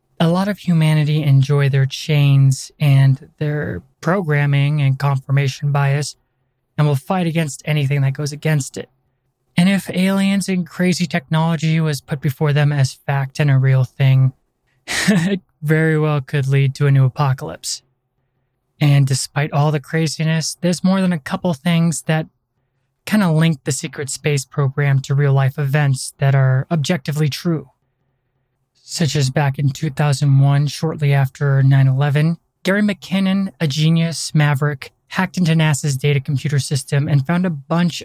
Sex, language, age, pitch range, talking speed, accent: male, English, 20-39, 135-160 Hz, 155 wpm, American